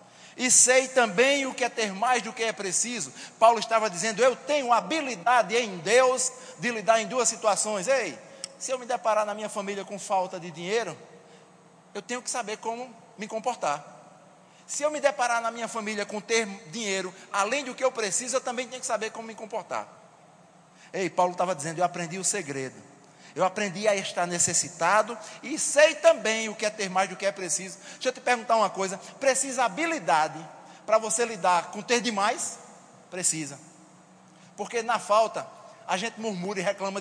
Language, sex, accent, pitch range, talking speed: Portuguese, male, Brazilian, 185-235 Hz, 185 wpm